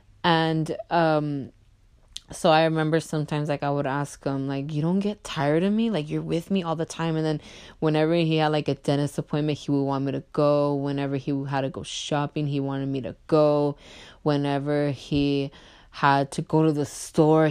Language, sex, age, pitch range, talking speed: English, female, 20-39, 140-190 Hz, 200 wpm